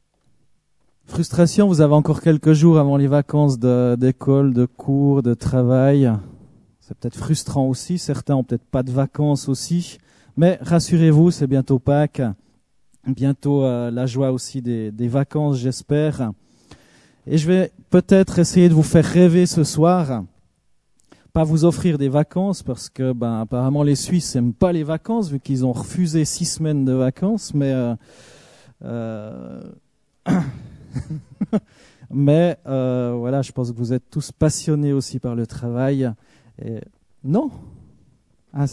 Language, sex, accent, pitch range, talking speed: French, male, French, 125-160 Hz, 140 wpm